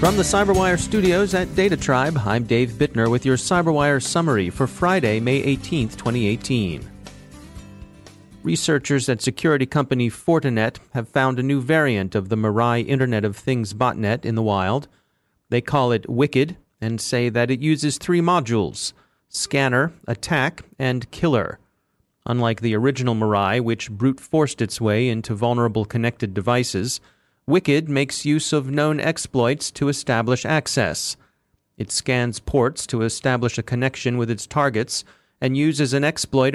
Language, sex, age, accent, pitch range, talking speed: English, male, 40-59, American, 115-145 Hz, 145 wpm